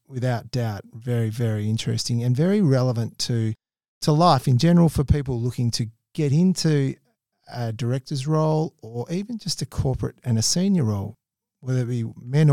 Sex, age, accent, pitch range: male, 40-59, Australian, 115-145 Hz